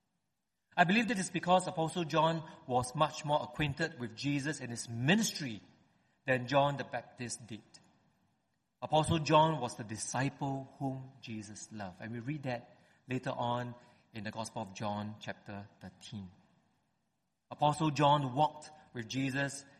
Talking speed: 140 wpm